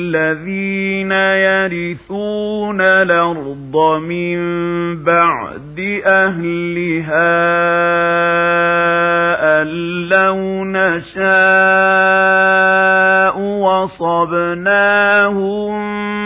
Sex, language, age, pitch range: male, Arabic, 40-59, 170-195 Hz